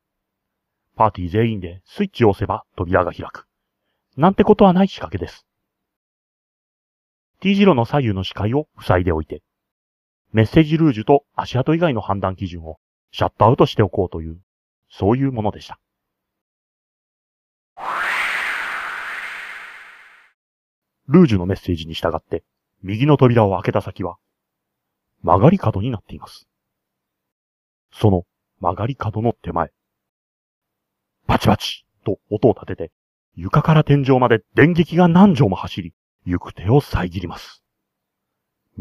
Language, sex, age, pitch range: Japanese, male, 30-49, 90-140 Hz